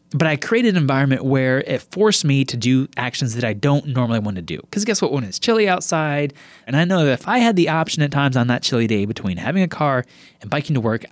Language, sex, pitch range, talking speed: English, male, 115-155 Hz, 265 wpm